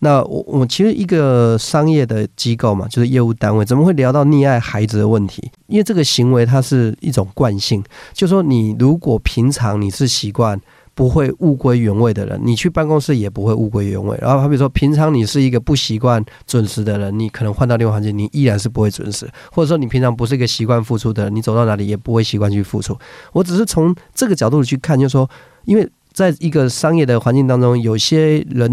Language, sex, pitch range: Chinese, male, 110-145 Hz